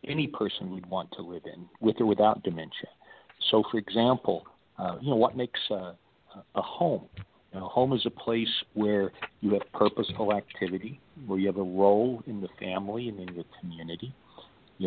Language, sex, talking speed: English, male, 190 wpm